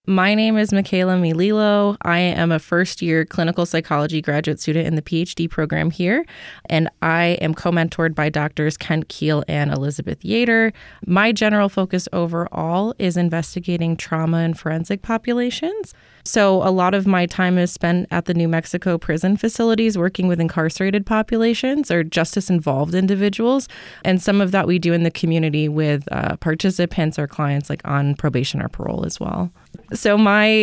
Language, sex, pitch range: English, female, 155-190 Hz